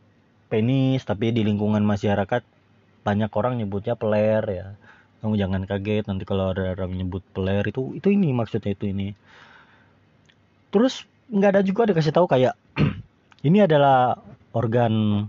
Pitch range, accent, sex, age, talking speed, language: 105-145 Hz, native, male, 20-39, 135 wpm, Indonesian